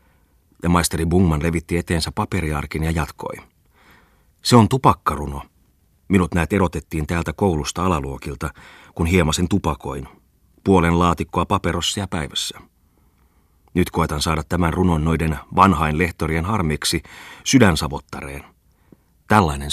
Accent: native